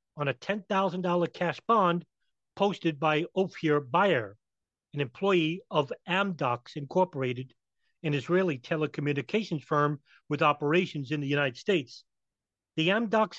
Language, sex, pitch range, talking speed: English, male, 145-185 Hz, 115 wpm